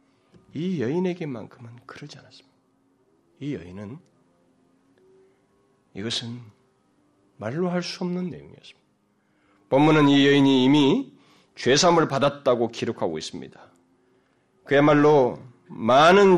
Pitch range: 100-135 Hz